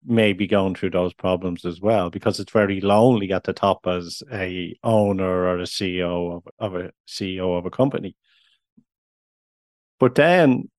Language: English